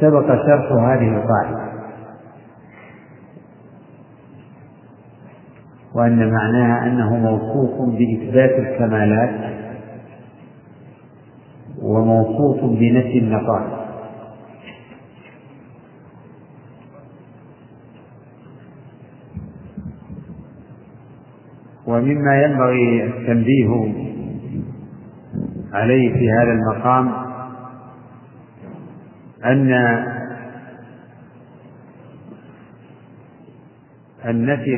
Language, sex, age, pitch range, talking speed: Arabic, male, 50-69, 115-130 Hz, 40 wpm